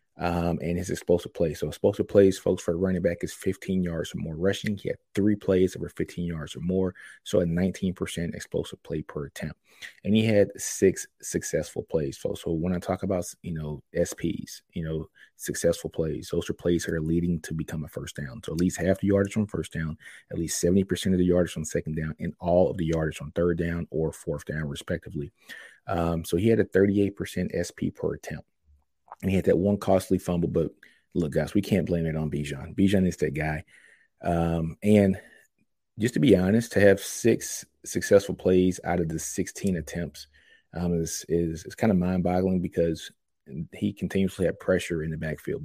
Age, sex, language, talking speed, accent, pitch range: 30-49, male, English, 205 wpm, American, 80-95 Hz